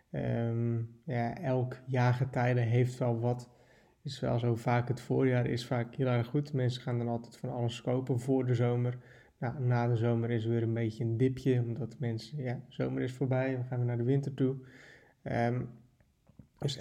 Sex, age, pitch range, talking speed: male, 20-39, 120-135 Hz, 195 wpm